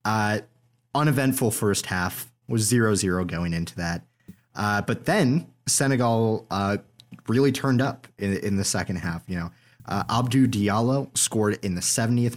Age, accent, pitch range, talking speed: 30-49, American, 100-130 Hz, 155 wpm